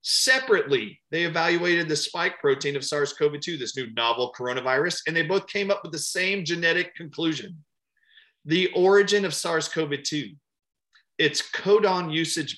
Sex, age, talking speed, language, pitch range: male, 40-59, 140 wpm, English, 140-190 Hz